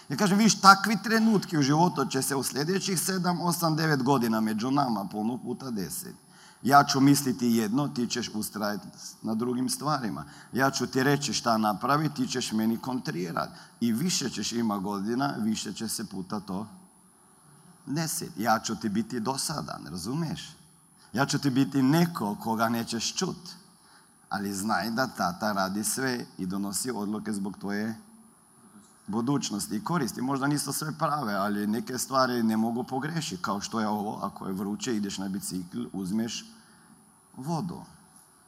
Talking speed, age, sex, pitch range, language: 155 wpm, 50-69, male, 125-200 Hz, Croatian